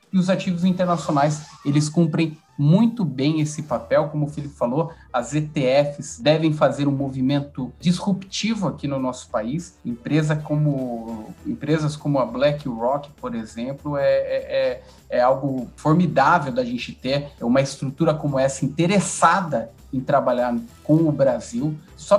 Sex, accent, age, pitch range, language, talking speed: male, Brazilian, 30-49, 150-185 Hz, Portuguese, 135 wpm